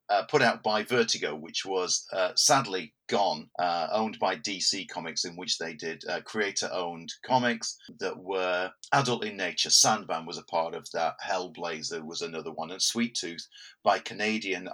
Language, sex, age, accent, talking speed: English, male, 40-59, British, 170 wpm